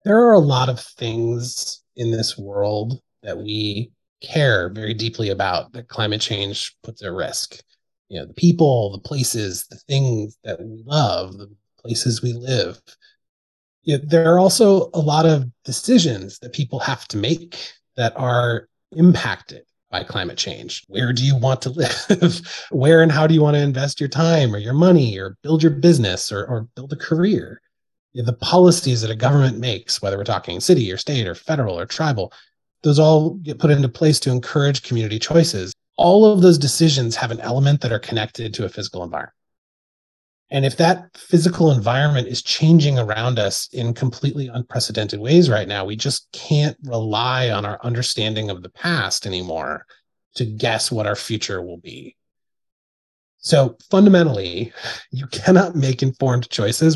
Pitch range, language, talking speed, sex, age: 110-150 Hz, English, 170 wpm, male, 30-49